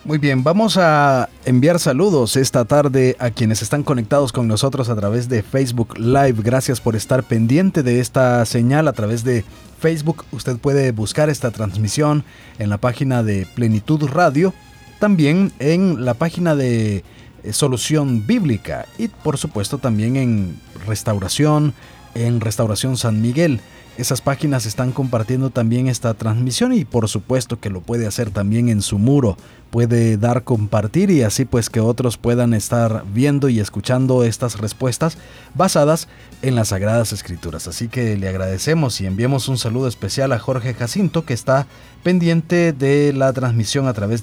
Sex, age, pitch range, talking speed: male, 40-59, 115-145 Hz, 155 wpm